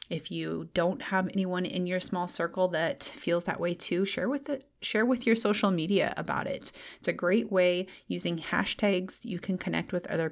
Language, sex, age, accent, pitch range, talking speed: English, female, 30-49, American, 170-200 Hz, 205 wpm